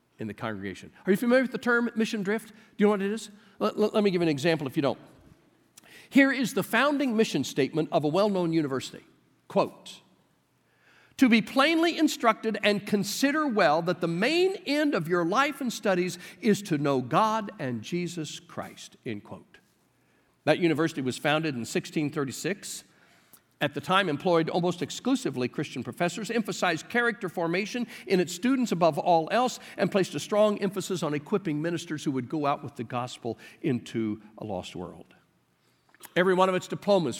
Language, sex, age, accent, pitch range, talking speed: English, male, 50-69, American, 150-215 Hz, 175 wpm